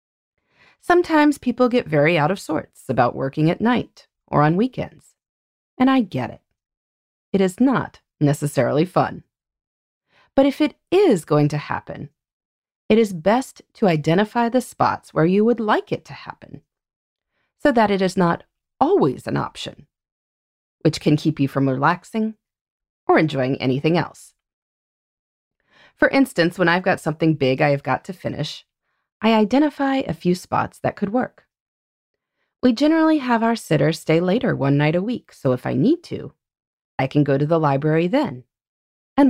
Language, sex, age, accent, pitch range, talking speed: English, female, 30-49, American, 145-235 Hz, 160 wpm